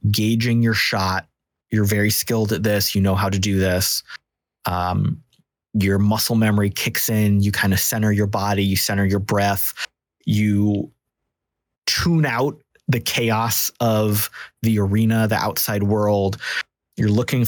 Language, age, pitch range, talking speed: English, 20-39, 100-120 Hz, 150 wpm